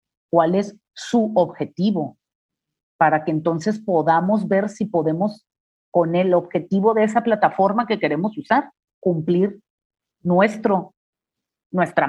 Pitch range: 165-215 Hz